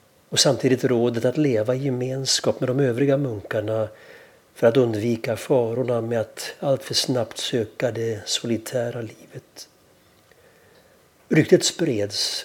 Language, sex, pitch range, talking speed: Swedish, male, 115-135 Hz, 125 wpm